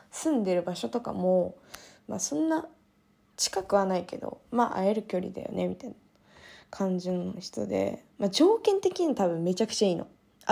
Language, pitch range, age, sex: Japanese, 185-275 Hz, 20-39, female